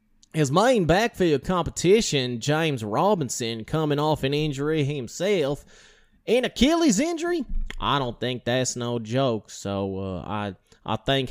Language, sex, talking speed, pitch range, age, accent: English, male, 135 wpm, 115-170 Hz, 20-39, American